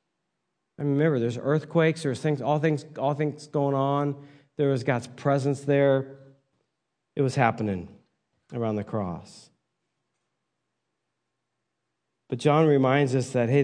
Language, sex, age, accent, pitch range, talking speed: English, male, 40-59, American, 130-170 Hz, 130 wpm